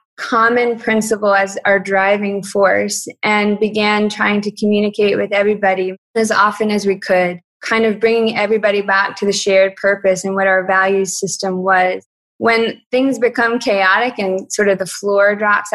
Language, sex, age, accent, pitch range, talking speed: English, female, 20-39, American, 190-210 Hz, 165 wpm